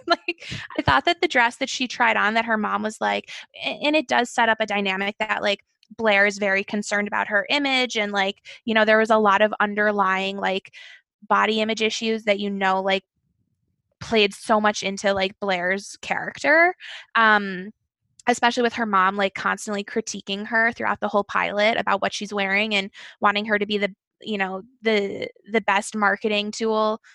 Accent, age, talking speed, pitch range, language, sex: American, 20-39, 190 wpm, 205-240 Hz, English, female